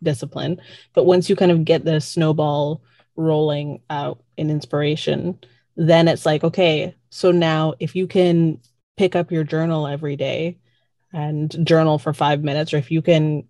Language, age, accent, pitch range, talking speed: English, 20-39, American, 150-170 Hz, 165 wpm